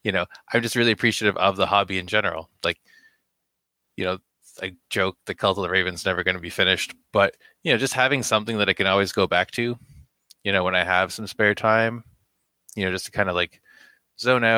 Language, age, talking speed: English, 20-39, 225 wpm